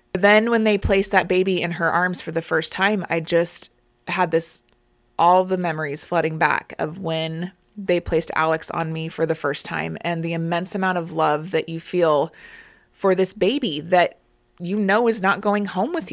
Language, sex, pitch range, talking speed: English, female, 170-200 Hz, 195 wpm